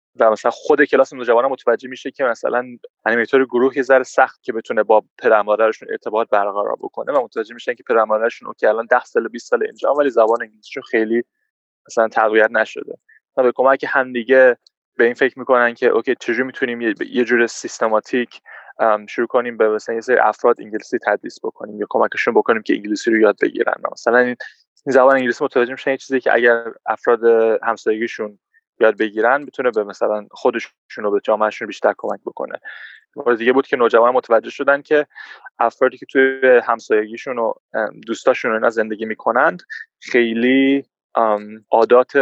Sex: male